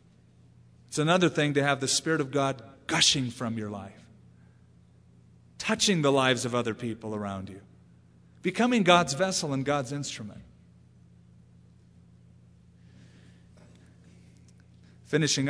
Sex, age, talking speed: male, 40-59, 110 wpm